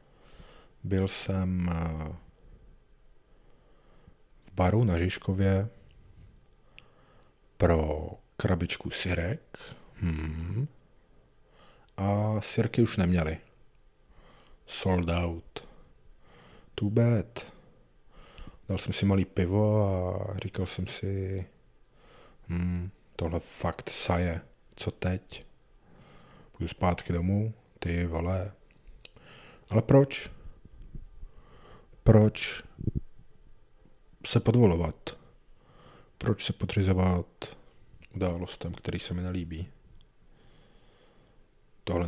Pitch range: 85-105 Hz